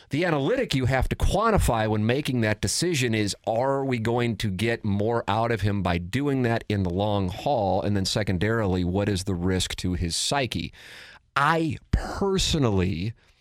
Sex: male